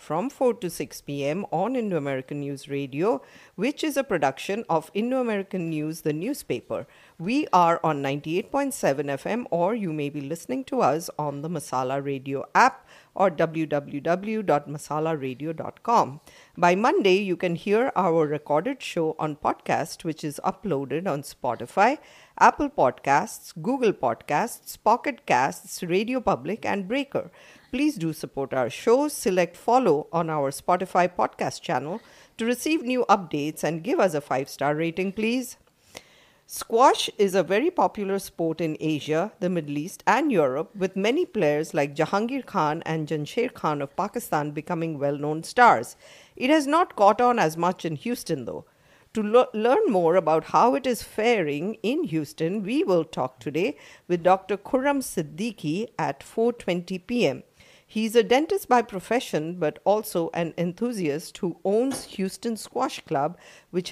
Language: English